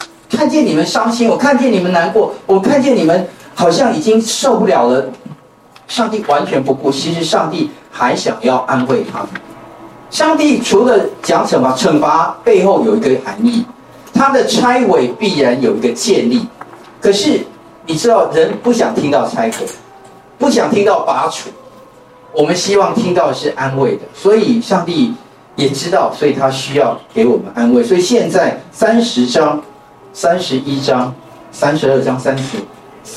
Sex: male